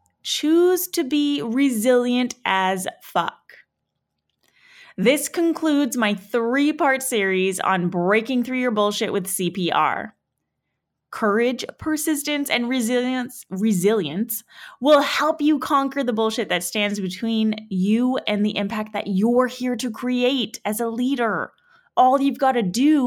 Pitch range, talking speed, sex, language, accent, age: 205-265 Hz, 125 wpm, female, English, American, 20-39